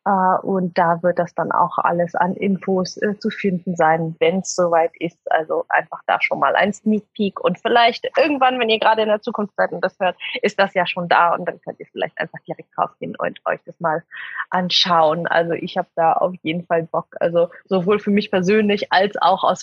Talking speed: 225 wpm